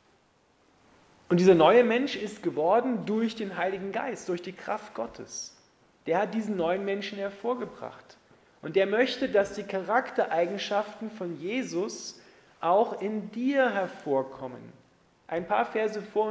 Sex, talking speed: male, 135 wpm